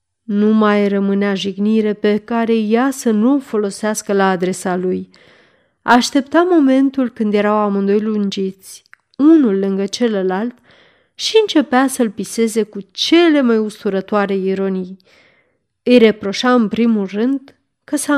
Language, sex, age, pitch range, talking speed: Romanian, female, 30-49, 200-265 Hz, 125 wpm